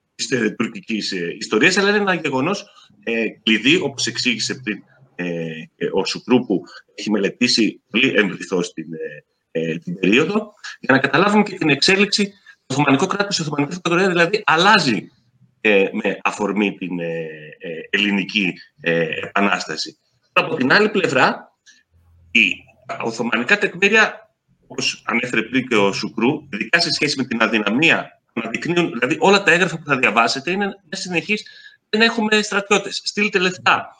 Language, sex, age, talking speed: Greek, male, 30-49, 145 wpm